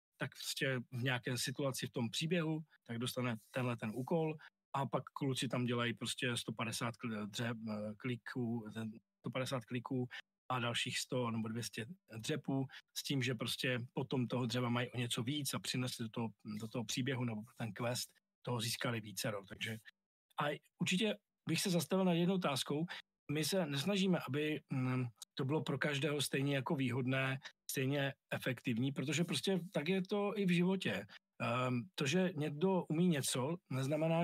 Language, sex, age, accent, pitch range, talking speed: Czech, male, 40-59, native, 125-160 Hz, 160 wpm